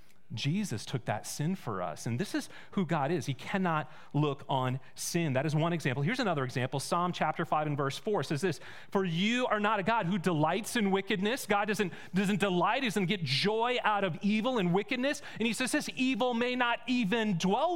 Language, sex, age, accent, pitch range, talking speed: English, male, 30-49, American, 155-235 Hz, 215 wpm